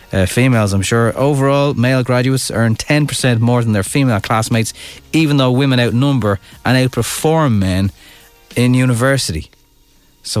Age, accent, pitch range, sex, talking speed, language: 30-49, Irish, 105-130 Hz, male, 140 wpm, English